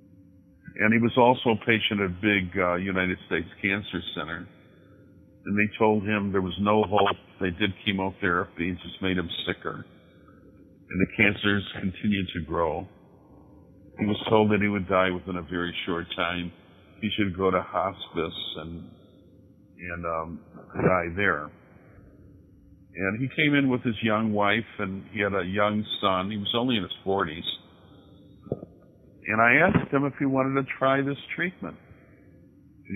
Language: English